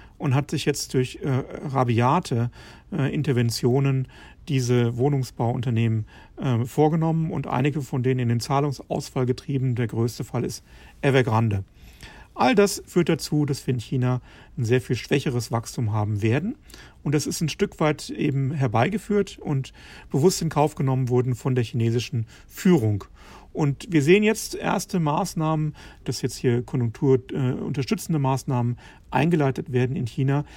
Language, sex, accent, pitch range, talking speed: German, male, German, 125-155 Hz, 150 wpm